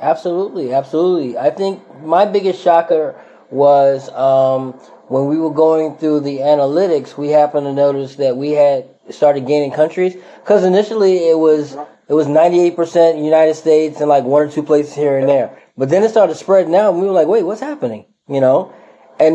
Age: 20-39